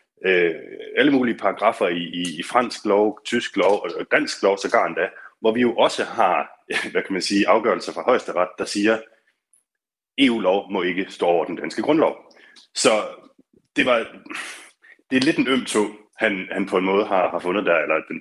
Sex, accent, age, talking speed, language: male, native, 30-49, 195 wpm, Danish